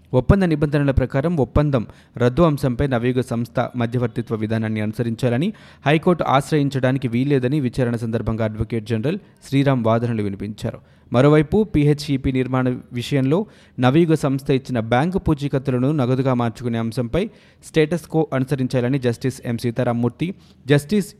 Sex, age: male, 20-39